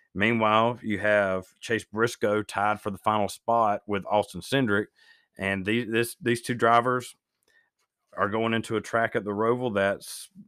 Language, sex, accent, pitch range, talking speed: English, male, American, 100-115 Hz, 160 wpm